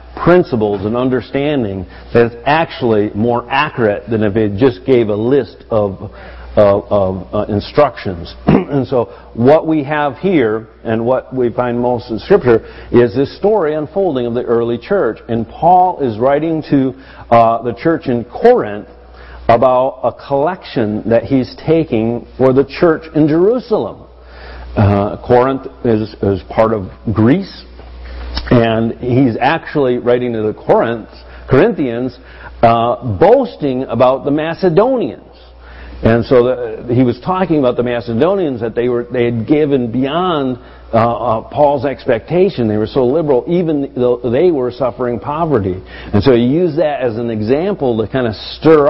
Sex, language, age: male, English, 50-69